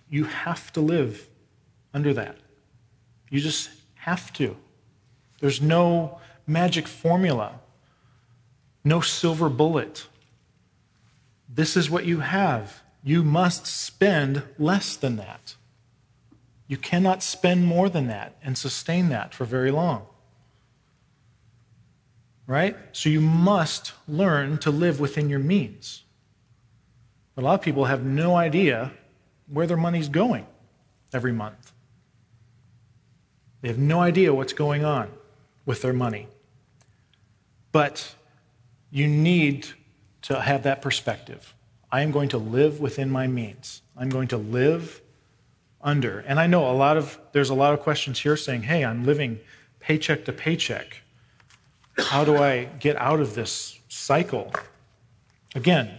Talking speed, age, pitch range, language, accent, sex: 130 wpm, 40-59, 120-155 Hz, English, American, male